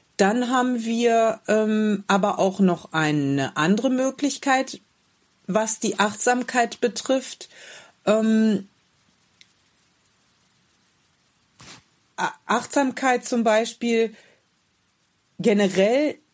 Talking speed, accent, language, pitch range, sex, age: 70 wpm, German, German, 185-250 Hz, female, 40-59